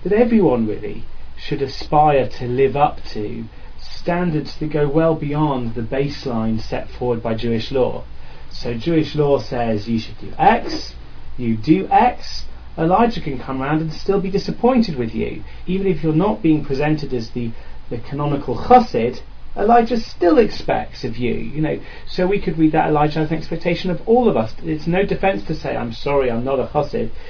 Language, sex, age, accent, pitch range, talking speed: English, male, 30-49, British, 115-165 Hz, 185 wpm